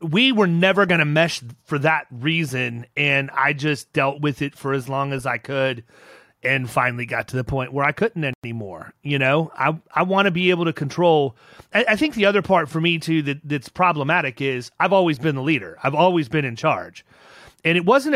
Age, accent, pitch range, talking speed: 30-49, American, 145-195 Hz, 220 wpm